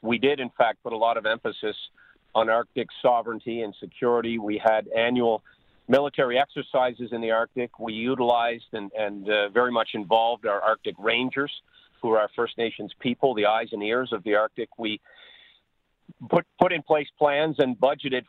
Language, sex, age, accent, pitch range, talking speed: English, male, 50-69, American, 115-150 Hz, 175 wpm